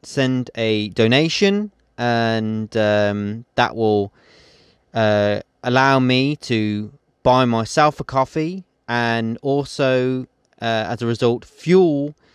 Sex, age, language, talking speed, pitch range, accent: male, 30-49, English, 105 wpm, 105-130 Hz, British